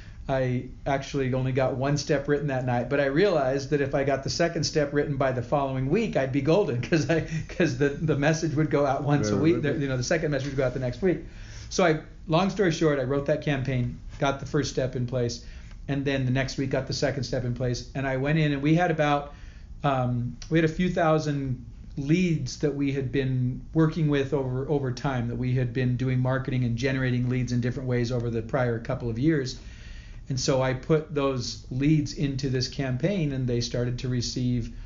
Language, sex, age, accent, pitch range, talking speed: English, male, 40-59, American, 125-150 Hz, 225 wpm